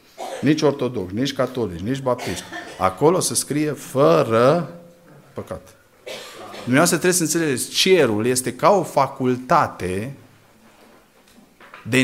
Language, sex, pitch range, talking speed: Romanian, male, 125-180 Hz, 105 wpm